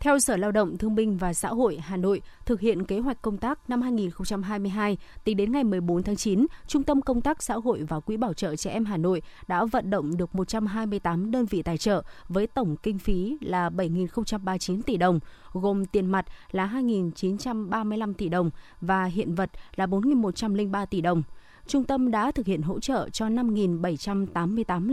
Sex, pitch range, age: female, 185-235 Hz, 20-39